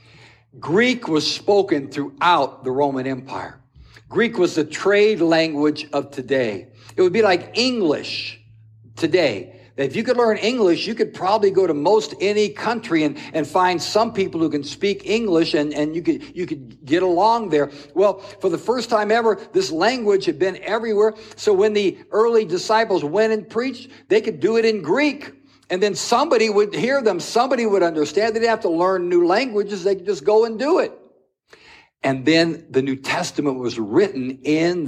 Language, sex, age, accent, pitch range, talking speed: English, male, 60-79, American, 135-220 Hz, 180 wpm